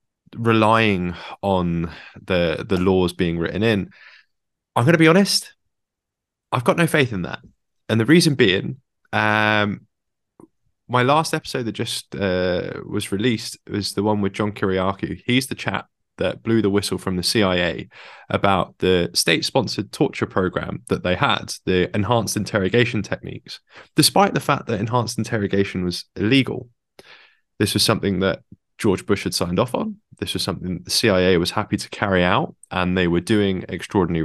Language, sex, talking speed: English, male, 165 wpm